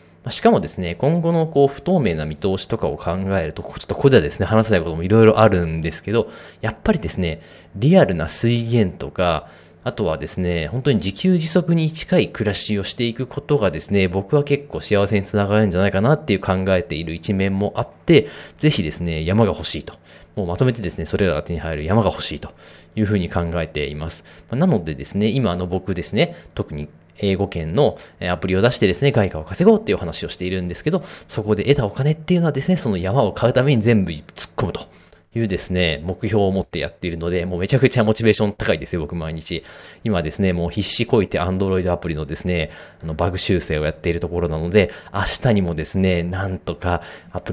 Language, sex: Japanese, male